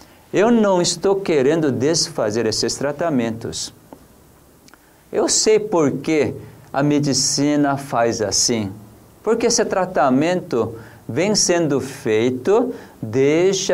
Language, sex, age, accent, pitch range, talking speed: Portuguese, male, 50-69, Brazilian, 145-200 Hz, 95 wpm